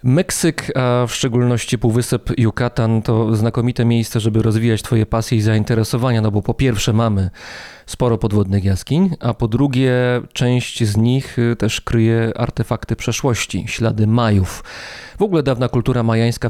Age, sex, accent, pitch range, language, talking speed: 30-49, male, native, 115-135 Hz, Polish, 145 wpm